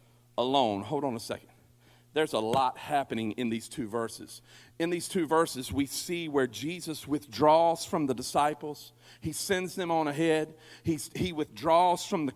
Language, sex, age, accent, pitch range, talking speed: English, male, 50-69, American, 150-205 Hz, 170 wpm